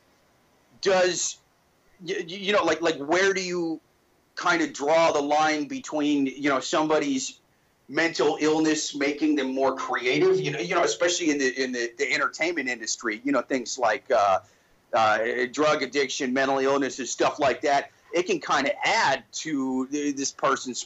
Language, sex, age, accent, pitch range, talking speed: English, male, 40-59, American, 135-185 Hz, 160 wpm